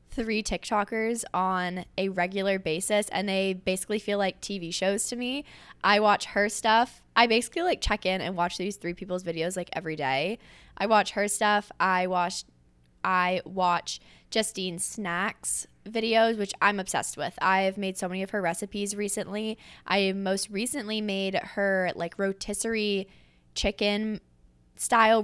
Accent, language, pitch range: American, English, 180-210 Hz